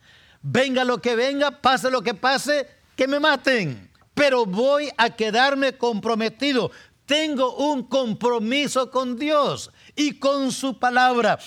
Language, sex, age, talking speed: English, male, 50-69, 130 wpm